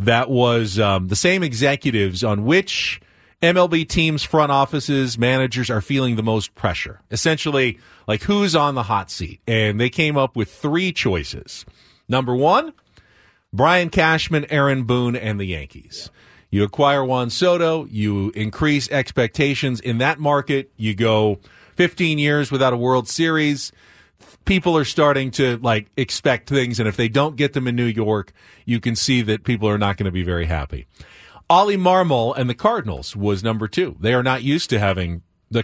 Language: English